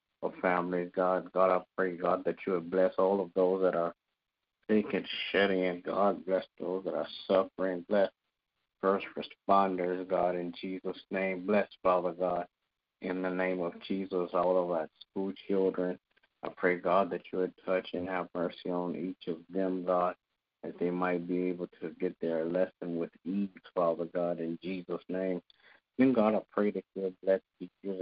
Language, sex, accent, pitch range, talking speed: English, male, American, 85-95 Hz, 180 wpm